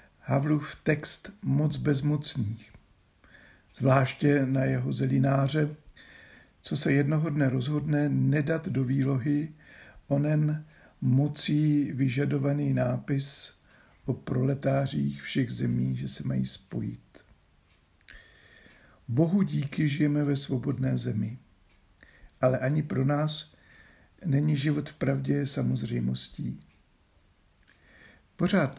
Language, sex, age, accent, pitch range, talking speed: Czech, male, 50-69, native, 100-150 Hz, 90 wpm